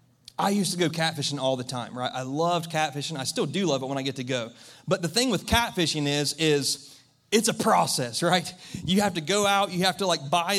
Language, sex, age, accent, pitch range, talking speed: English, male, 30-49, American, 145-180 Hz, 245 wpm